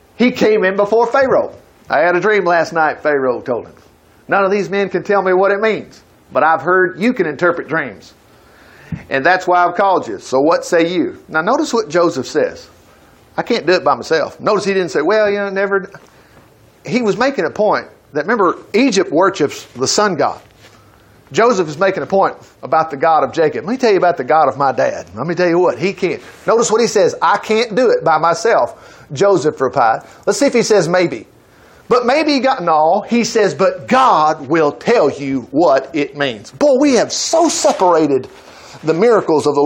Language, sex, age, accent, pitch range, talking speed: English, male, 50-69, American, 160-235 Hz, 215 wpm